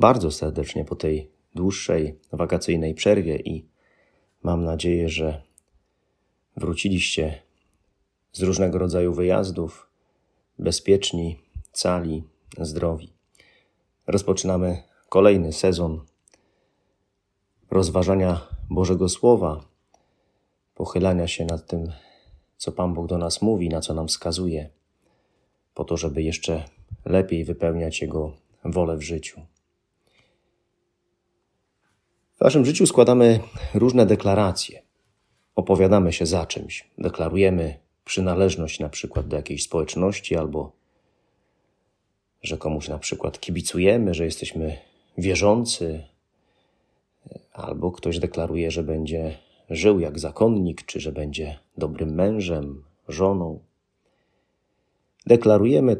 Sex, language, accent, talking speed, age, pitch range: male, Polish, native, 95 wpm, 30-49, 80-95 Hz